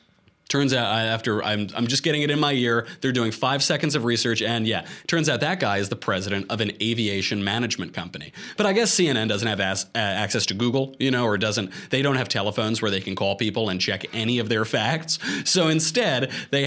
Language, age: English, 30-49